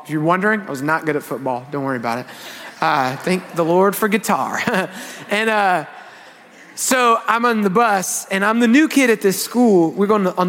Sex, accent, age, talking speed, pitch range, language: male, American, 20-39, 210 wpm, 145-220 Hz, English